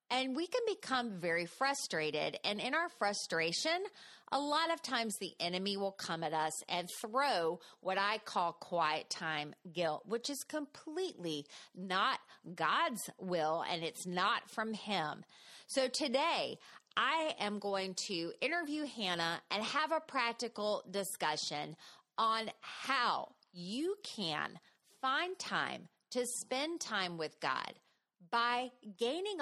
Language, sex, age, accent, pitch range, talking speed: English, female, 30-49, American, 165-250 Hz, 135 wpm